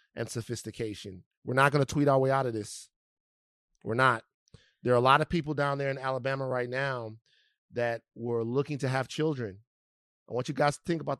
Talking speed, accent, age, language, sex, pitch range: 210 wpm, American, 30-49, English, male, 115-150 Hz